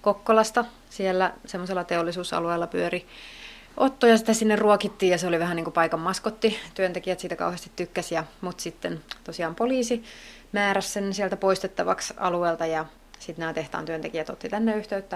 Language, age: Finnish, 30-49